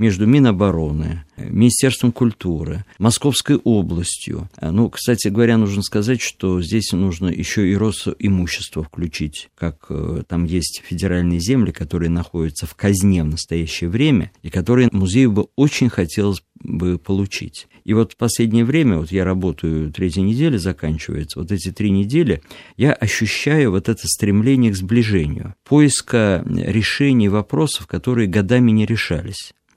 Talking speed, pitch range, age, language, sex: 135 wpm, 90-120 Hz, 50-69, Russian, male